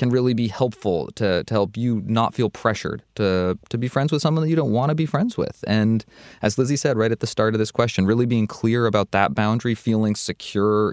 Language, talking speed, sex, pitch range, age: English, 240 wpm, male, 95-115 Hz, 20-39